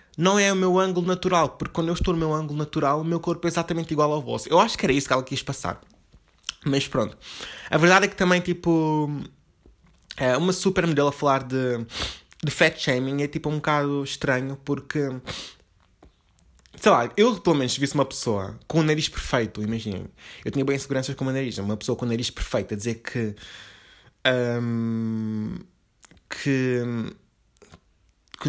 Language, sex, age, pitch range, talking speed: Portuguese, male, 20-39, 120-170 Hz, 180 wpm